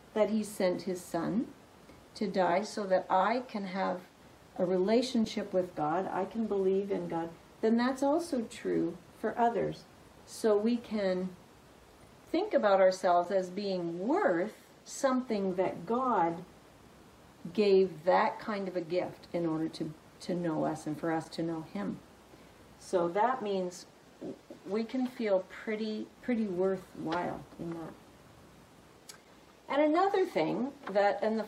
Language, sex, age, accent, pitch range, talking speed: English, female, 50-69, American, 185-240 Hz, 140 wpm